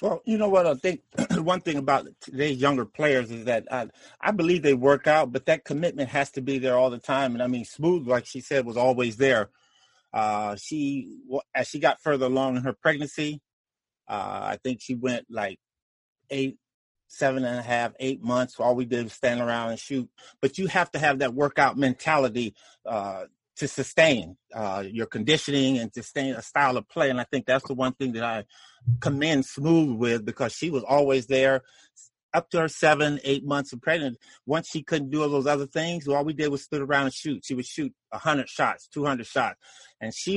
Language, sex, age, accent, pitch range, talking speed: English, male, 30-49, American, 125-155 Hz, 215 wpm